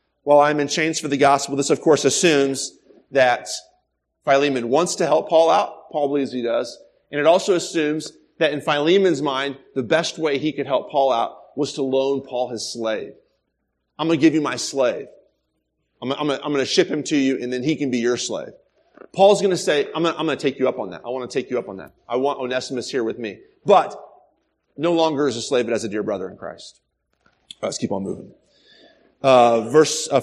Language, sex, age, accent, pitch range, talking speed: English, male, 30-49, American, 135-170 Hz, 220 wpm